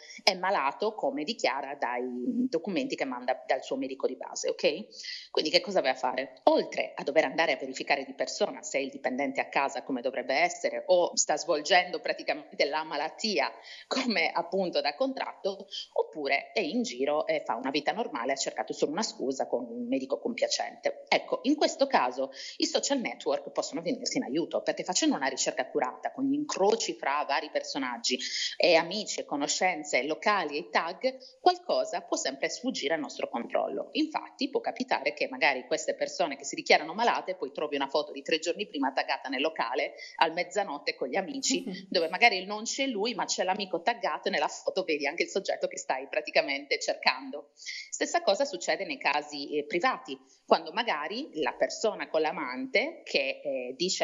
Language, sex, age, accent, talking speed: Italian, female, 30-49, native, 185 wpm